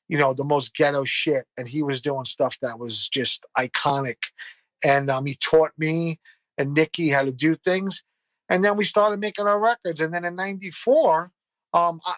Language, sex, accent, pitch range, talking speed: English, male, American, 140-175 Hz, 185 wpm